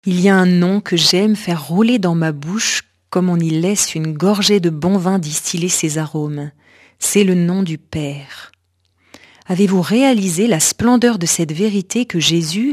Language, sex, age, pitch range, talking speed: French, female, 40-59, 155-210 Hz, 180 wpm